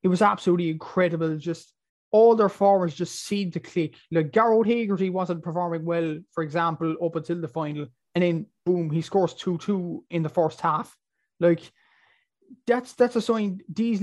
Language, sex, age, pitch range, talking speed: English, male, 20-39, 170-195 Hz, 170 wpm